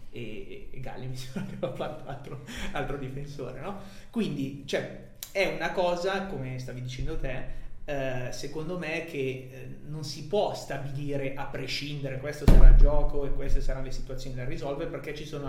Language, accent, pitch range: Italian, native, 130-145 Hz